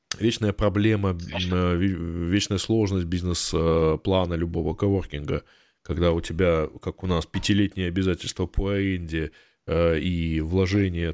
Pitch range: 80-100 Hz